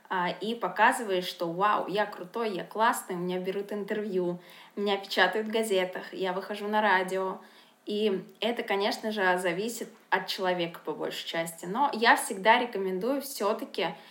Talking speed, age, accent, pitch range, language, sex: 155 wpm, 20-39, native, 185-225 Hz, Russian, female